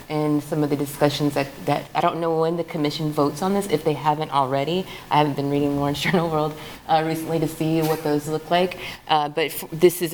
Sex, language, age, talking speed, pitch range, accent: female, English, 30-49, 235 wpm, 150-170 Hz, American